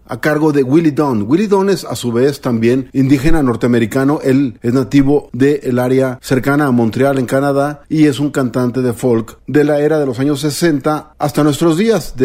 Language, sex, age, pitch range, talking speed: Spanish, male, 40-59, 130-160 Hz, 205 wpm